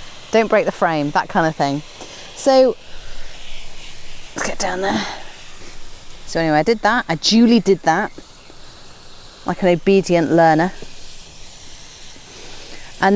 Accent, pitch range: British, 150-200 Hz